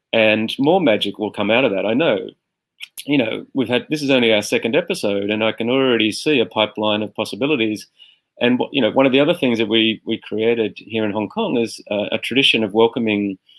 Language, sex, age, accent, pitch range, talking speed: English, male, 30-49, Australian, 105-115 Hz, 225 wpm